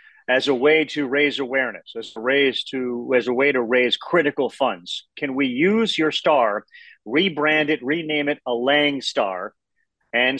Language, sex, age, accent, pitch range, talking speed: English, male, 40-59, American, 145-210 Hz, 155 wpm